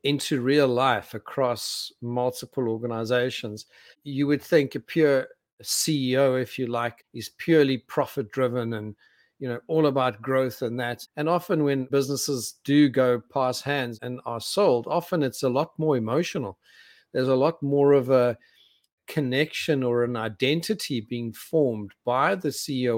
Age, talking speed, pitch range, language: 40-59, 155 wpm, 125-150 Hz, English